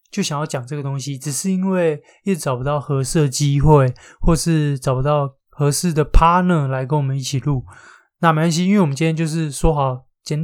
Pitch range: 135-170 Hz